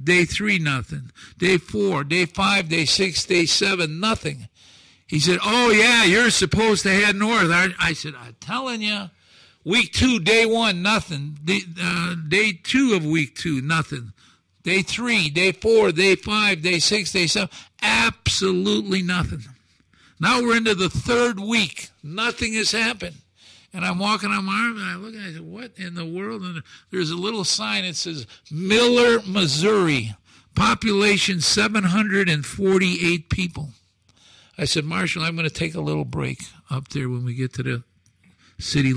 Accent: American